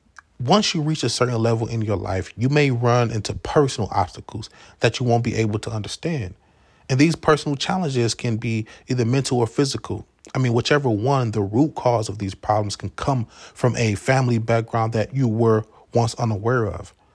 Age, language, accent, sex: 30-49, English, American, male